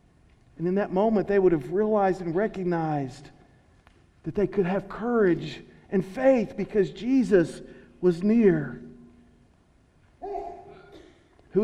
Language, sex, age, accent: English, male, 50-69, American